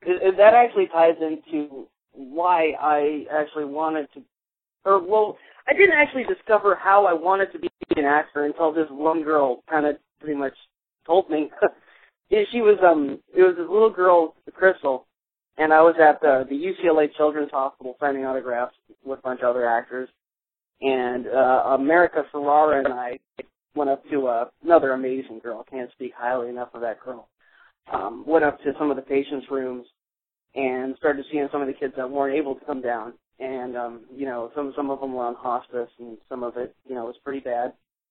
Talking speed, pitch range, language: 195 wpm, 130-165 Hz, English